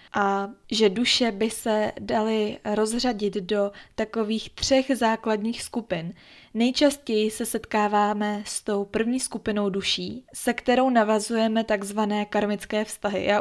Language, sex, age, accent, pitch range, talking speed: Czech, female, 20-39, native, 210-235 Hz, 120 wpm